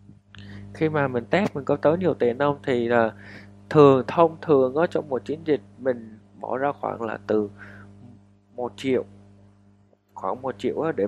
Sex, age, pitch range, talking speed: male, 20-39, 100-130 Hz, 175 wpm